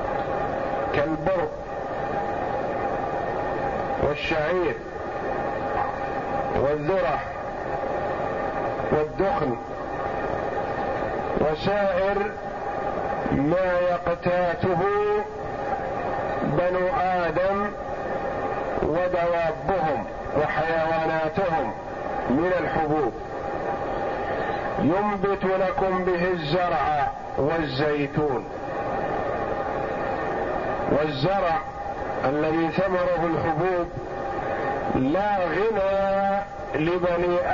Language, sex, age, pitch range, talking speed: Arabic, male, 50-69, 165-200 Hz, 40 wpm